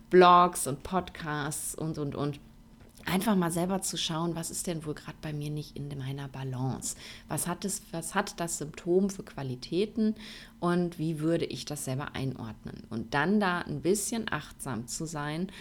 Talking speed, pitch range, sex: 170 wpm, 140-190 Hz, female